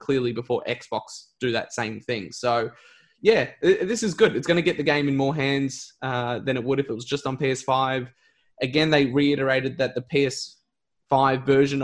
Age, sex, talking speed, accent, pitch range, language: 20-39, male, 195 wpm, Australian, 125-140 Hz, English